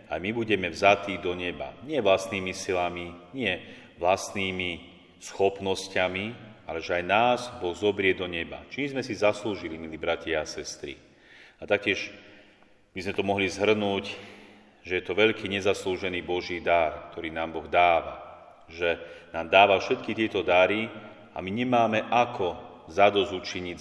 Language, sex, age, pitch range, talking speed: Slovak, male, 40-59, 90-105 Hz, 145 wpm